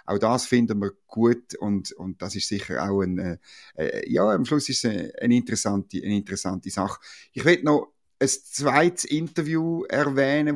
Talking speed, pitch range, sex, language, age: 175 wpm, 105-135 Hz, male, German, 50-69